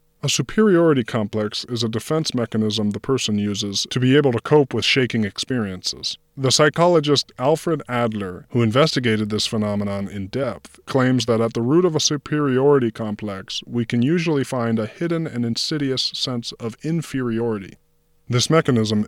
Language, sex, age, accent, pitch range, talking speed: English, male, 20-39, American, 110-140 Hz, 155 wpm